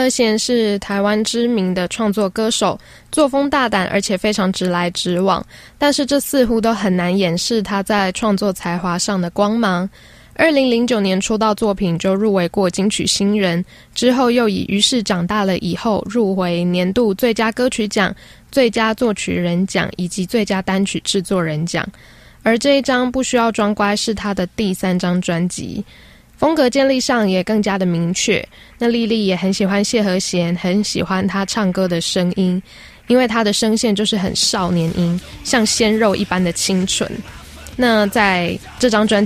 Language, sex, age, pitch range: Chinese, female, 10-29, 185-225 Hz